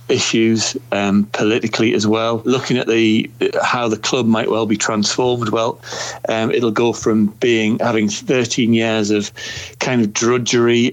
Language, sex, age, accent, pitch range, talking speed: English, male, 40-59, British, 105-120 Hz, 155 wpm